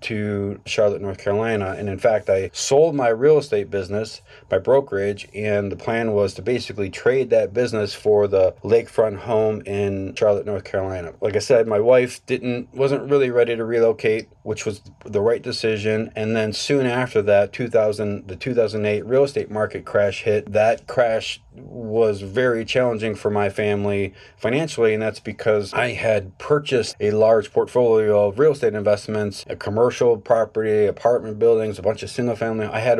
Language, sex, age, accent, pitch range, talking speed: English, male, 30-49, American, 100-125 Hz, 175 wpm